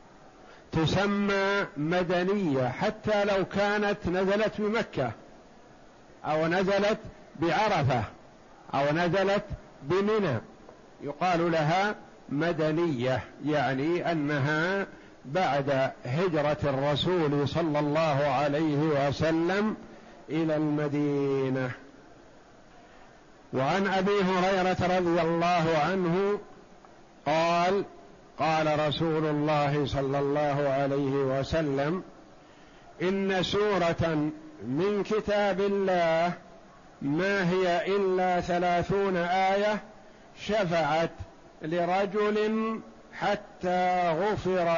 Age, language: 50-69, Arabic